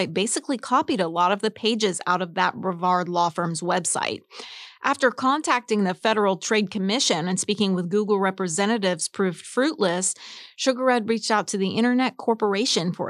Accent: American